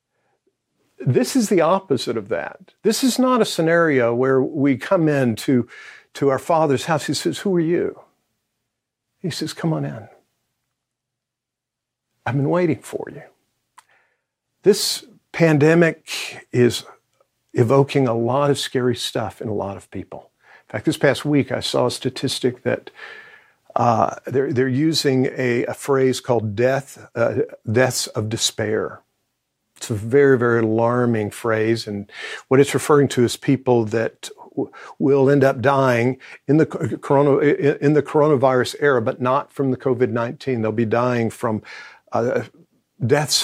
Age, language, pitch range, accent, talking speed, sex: 50-69, English, 120-150 Hz, American, 145 wpm, male